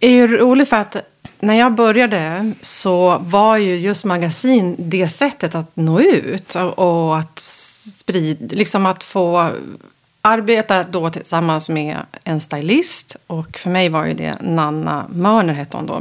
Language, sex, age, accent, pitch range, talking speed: Swedish, female, 30-49, native, 160-210 Hz, 155 wpm